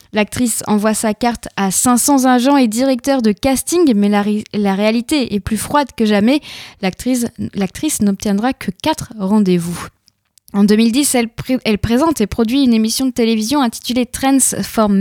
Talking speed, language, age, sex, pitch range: 165 wpm, French, 10-29, female, 210-265 Hz